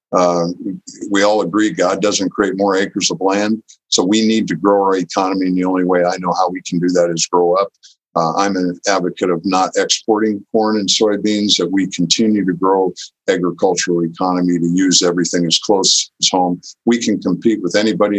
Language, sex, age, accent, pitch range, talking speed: English, male, 50-69, American, 85-100 Hz, 200 wpm